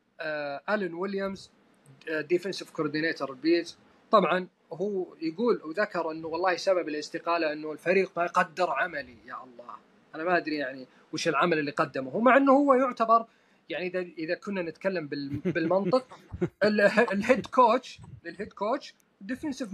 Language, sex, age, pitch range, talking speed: Arabic, male, 30-49, 170-225 Hz, 145 wpm